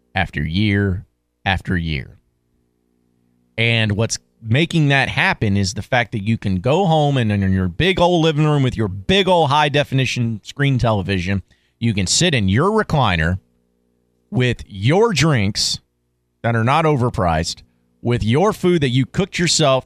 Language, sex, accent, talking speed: English, male, American, 155 wpm